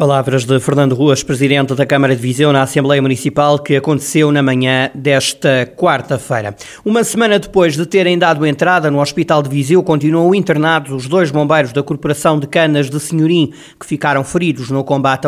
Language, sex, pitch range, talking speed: Portuguese, male, 140-160 Hz, 175 wpm